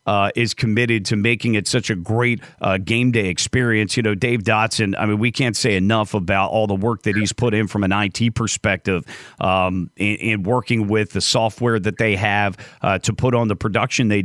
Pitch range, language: 100-120 Hz, English